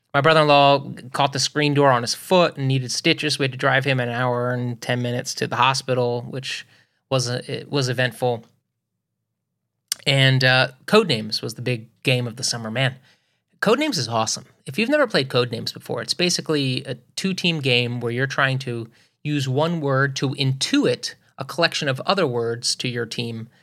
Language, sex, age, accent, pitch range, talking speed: English, male, 30-49, American, 120-150 Hz, 185 wpm